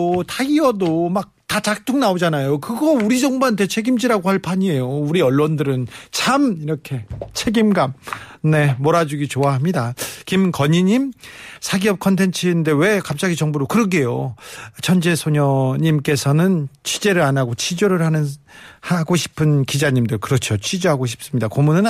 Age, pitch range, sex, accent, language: 40-59, 135-205 Hz, male, native, Korean